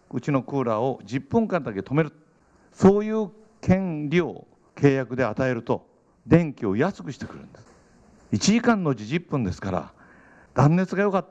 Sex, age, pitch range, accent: male, 60-79, 125-185 Hz, native